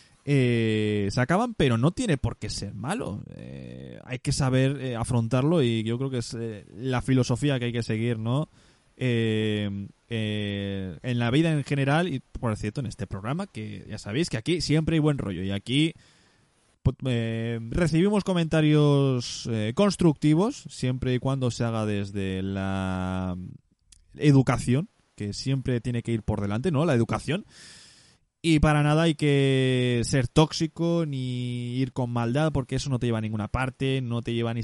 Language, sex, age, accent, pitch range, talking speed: Spanish, male, 20-39, Spanish, 110-145 Hz, 170 wpm